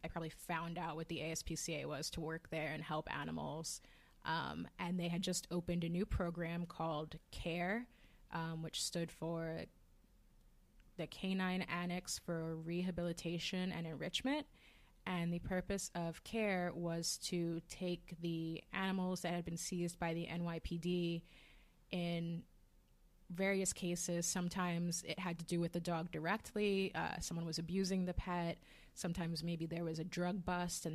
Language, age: English, 20-39